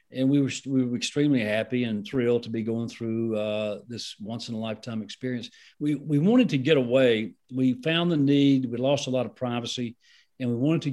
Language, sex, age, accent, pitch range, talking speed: English, male, 50-69, American, 115-140 Hz, 205 wpm